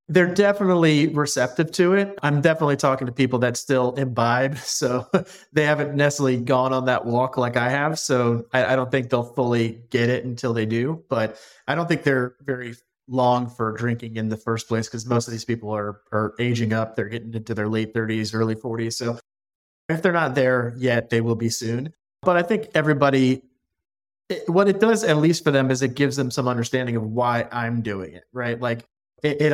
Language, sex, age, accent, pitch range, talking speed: English, male, 30-49, American, 120-145 Hz, 205 wpm